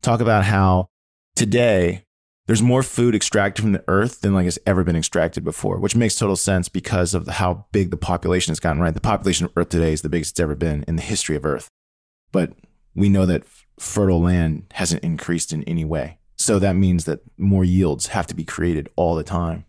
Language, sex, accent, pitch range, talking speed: English, male, American, 85-105 Hz, 225 wpm